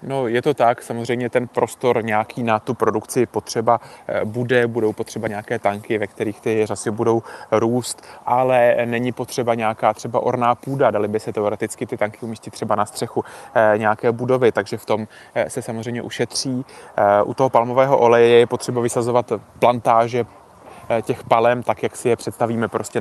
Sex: male